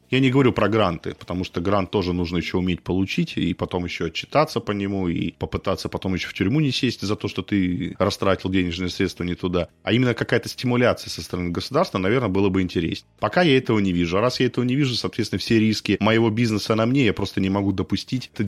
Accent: native